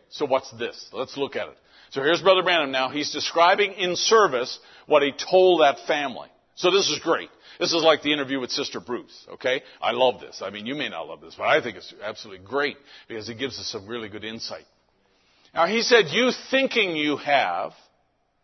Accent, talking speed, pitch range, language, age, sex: American, 210 wpm, 125-170 Hz, English, 50-69, male